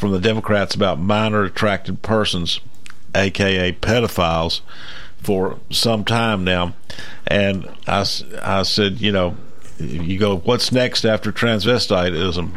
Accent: American